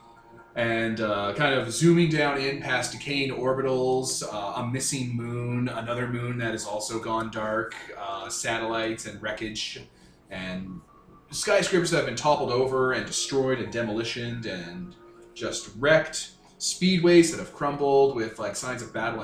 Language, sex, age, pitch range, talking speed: English, male, 30-49, 105-135 Hz, 150 wpm